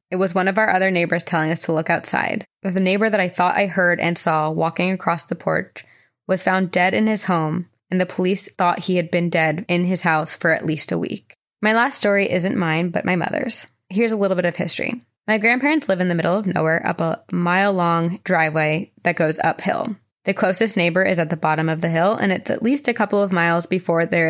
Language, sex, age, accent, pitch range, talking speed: English, female, 20-39, American, 165-205 Hz, 235 wpm